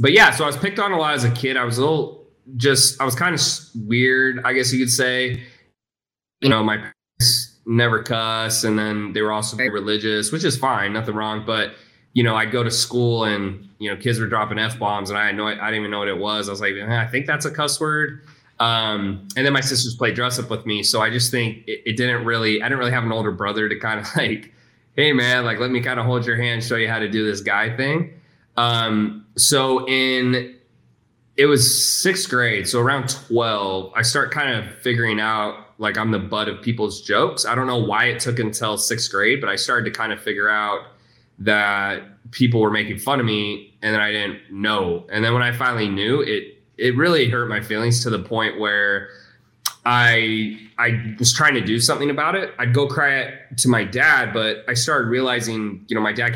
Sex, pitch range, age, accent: male, 105-125 Hz, 20-39, American